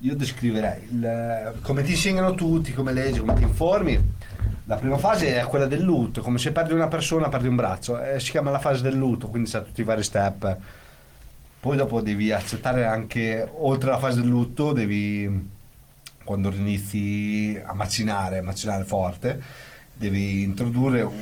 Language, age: Italian, 40-59